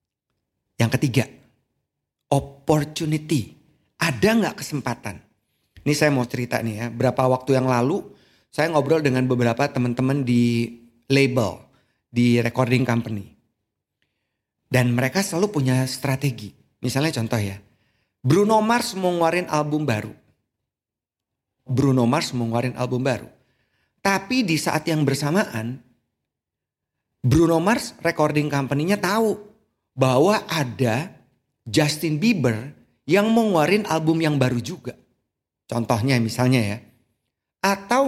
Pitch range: 120-150 Hz